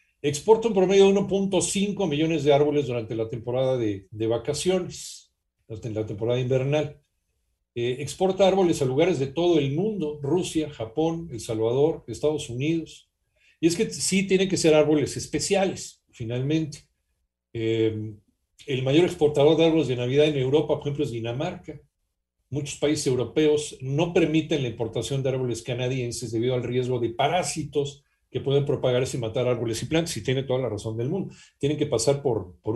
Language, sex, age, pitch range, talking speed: Spanish, male, 50-69, 120-160 Hz, 170 wpm